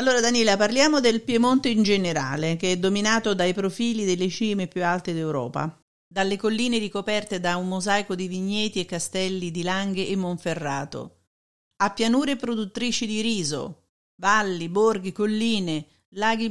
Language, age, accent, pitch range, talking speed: Italian, 50-69, native, 180-230 Hz, 145 wpm